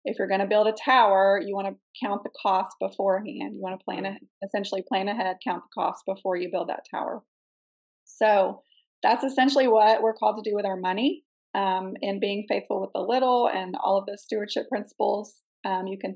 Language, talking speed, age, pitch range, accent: English, 210 wpm, 20-39, 195-225 Hz, American